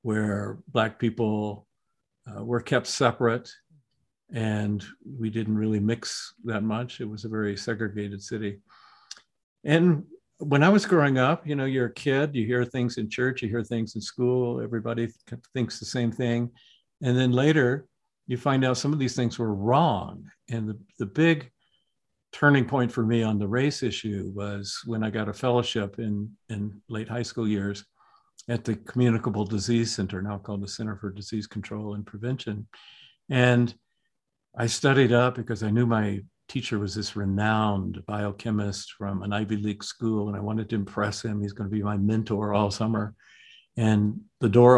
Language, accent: English, American